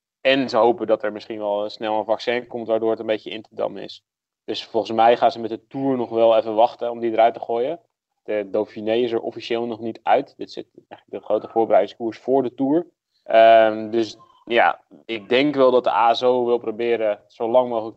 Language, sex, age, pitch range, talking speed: Dutch, male, 20-39, 105-115 Hz, 225 wpm